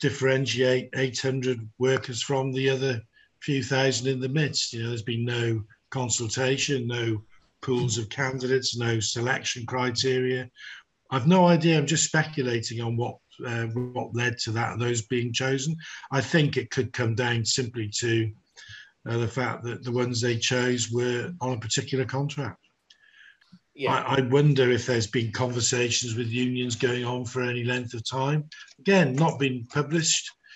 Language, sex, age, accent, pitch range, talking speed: English, male, 50-69, British, 115-135 Hz, 155 wpm